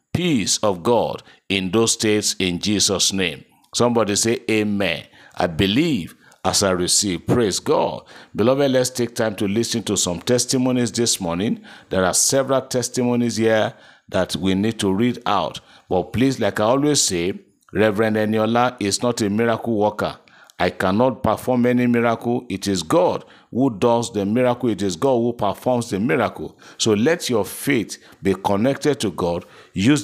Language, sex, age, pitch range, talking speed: English, male, 50-69, 100-125 Hz, 165 wpm